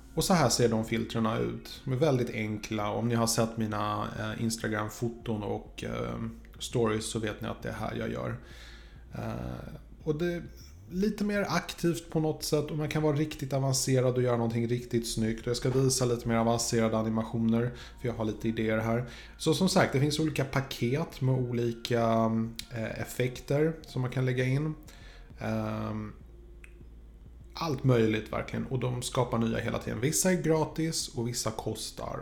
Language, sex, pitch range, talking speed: Swedish, male, 110-130 Hz, 175 wpm